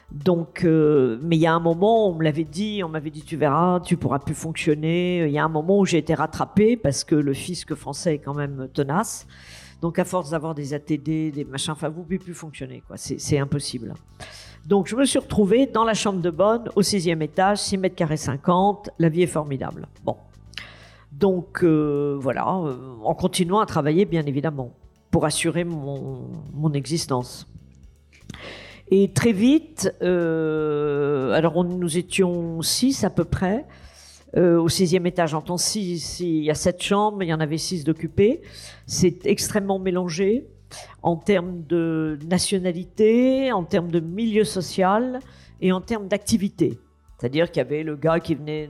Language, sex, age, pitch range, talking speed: French, female, 50-69, 145-185 Hz, 180 wpm